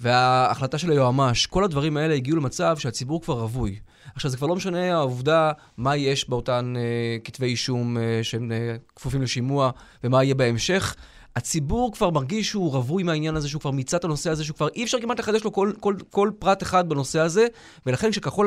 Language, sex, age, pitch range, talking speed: Hebrew, male, 20-39, 130-190 Hz, 195 wpm